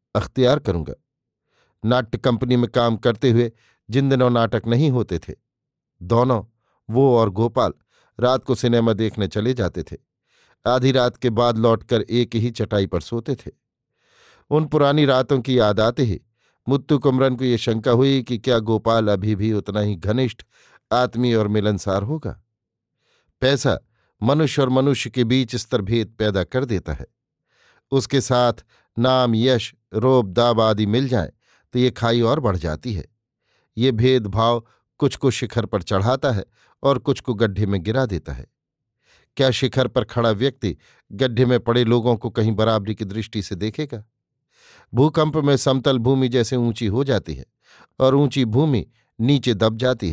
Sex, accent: male, native